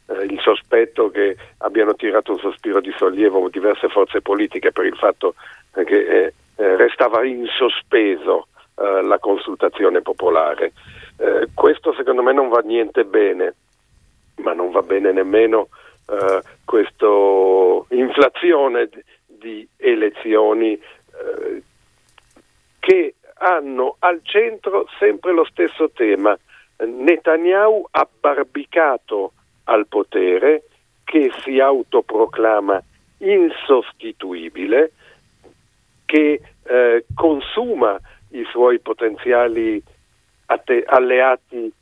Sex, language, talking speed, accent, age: male, Italian, 90 wpm, native, 50-69